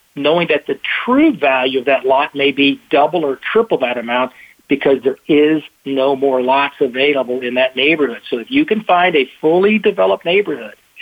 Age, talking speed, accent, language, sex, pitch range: 50-69, 185 wpm, American, English, male, 130-180 Hz